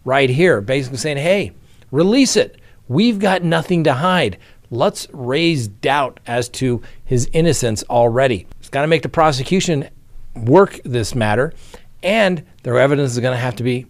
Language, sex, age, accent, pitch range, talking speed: English, male, 50-69, American, 115-145 Hz, 155 wpm